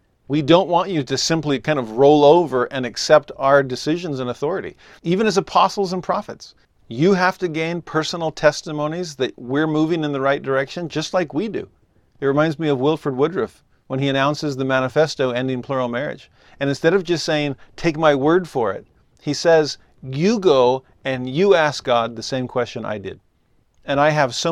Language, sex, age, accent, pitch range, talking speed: English, male, 50-69, American, 130-160 Hz, 195 wpm